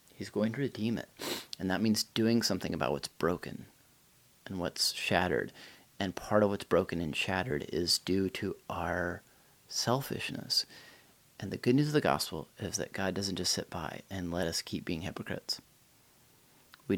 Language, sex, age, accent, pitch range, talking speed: English, male, 30-49, American, 100-125 Hz, 175 wpm